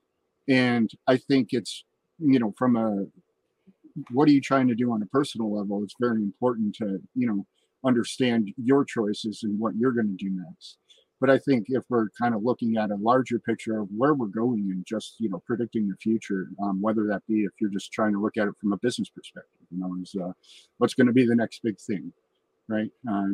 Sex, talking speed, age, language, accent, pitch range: male, 225 wpm, 50-69, English, American, 105-125 Hz